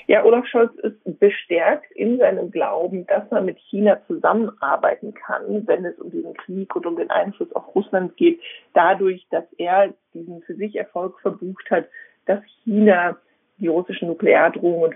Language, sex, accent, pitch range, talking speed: German, female, German, 175-245 Hz, 160 wpm